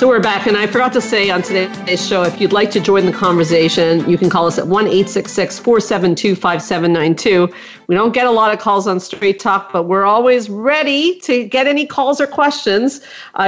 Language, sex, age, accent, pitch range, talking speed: English, female, 50-69, American, 185-240 Hz, 210 wpm